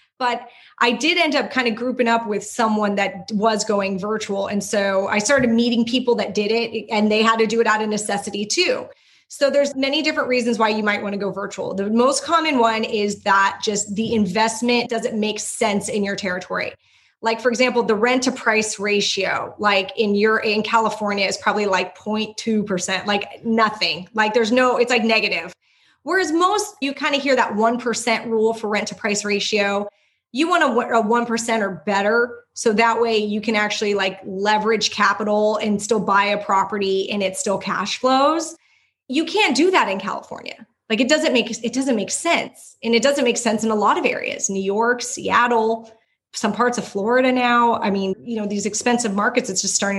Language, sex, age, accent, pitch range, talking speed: English, female, 20-39, American, 205-240 Hz, 200 wpm